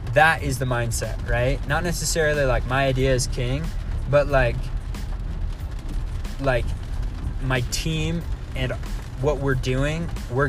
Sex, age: male, 20-39